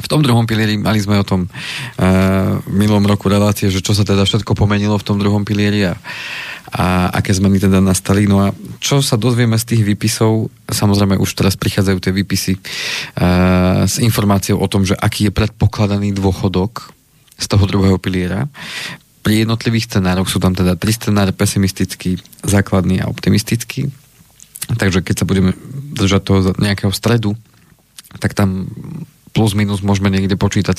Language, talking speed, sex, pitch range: Slovak, 160 wpm, male, 95-110 Hz